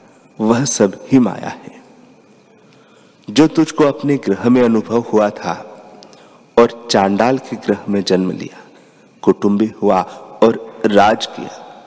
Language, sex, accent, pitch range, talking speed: Hindi, male, native, 100-130 Hz, 125 wpm